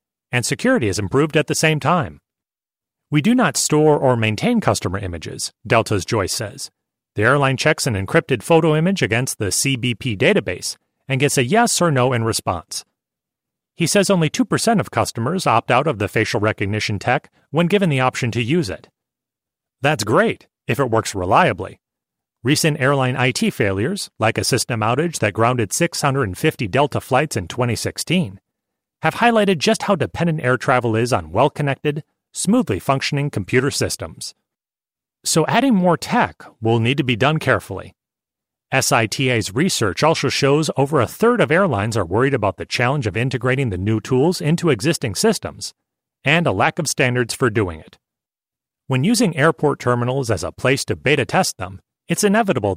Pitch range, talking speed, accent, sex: 115-160 Hz, 165 wpm, American, male